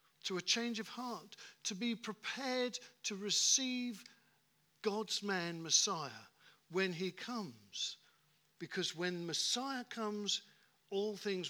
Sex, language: male, English